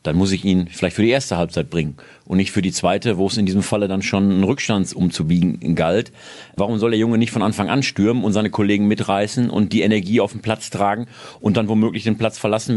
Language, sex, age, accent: German, male, 40-59, German